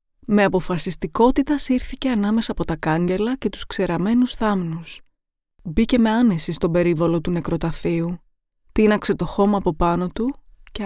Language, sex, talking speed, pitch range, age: Greek, female, 140 wpm, 180-215 Hz, 20-39